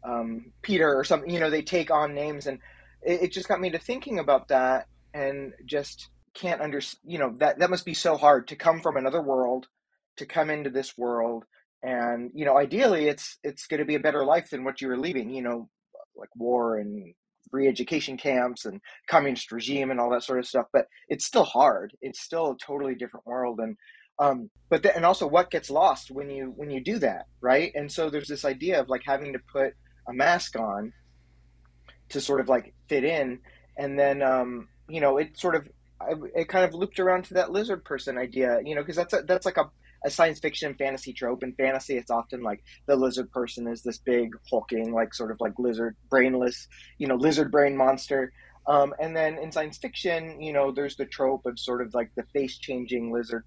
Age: 30-49